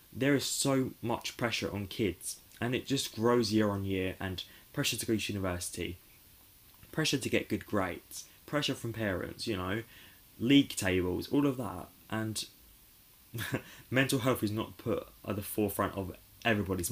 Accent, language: British, English